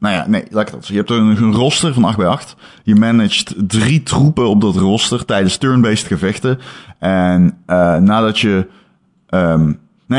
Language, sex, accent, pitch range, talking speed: Dutch, male, Dutch, 95-130 Hz, 165 wpm